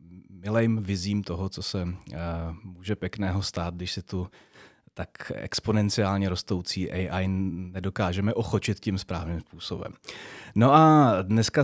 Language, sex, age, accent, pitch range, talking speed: Czech, male, 30-49, native, 95-115 Hz, 125 wpm